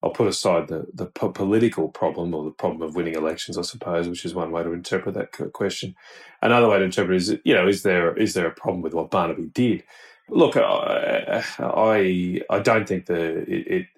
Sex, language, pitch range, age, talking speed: male, English, 85-95 Hz, 30-49, 220 wpm